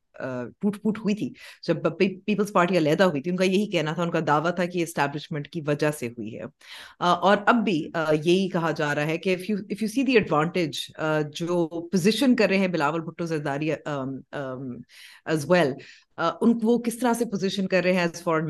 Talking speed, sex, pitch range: 40 wpm, female, 155-195 Hz